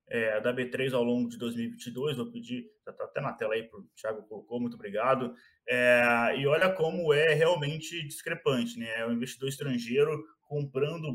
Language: Portuguese